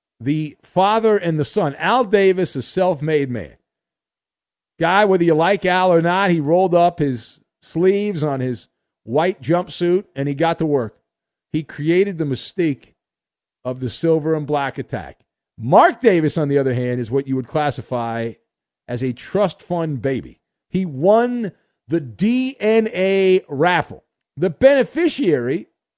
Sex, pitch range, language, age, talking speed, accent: male, 135-185 Hz, English, 50-69, 150 wpm, American